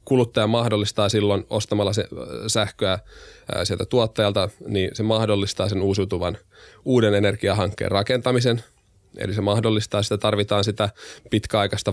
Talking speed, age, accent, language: 110 wpm, 20-39, native, Finnish